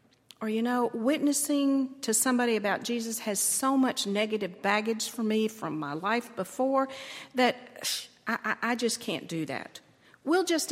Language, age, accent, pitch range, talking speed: English, 50-69, American, 190-255 Hz, 160 wpm